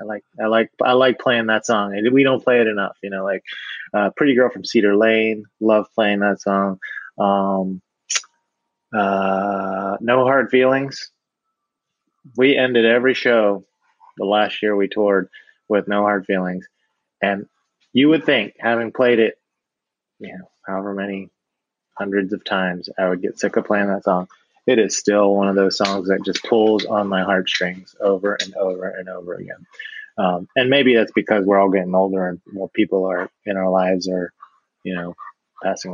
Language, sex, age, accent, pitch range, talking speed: English, male, 20-39, American, 95-120 Hz, 180 wpm